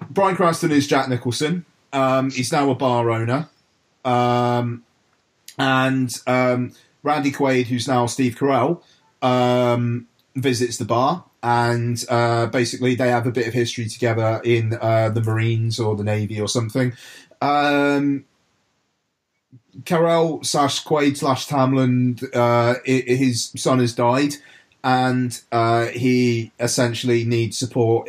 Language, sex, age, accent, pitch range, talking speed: English, male, 30-49, British, 115-130 Hz, 130 wpm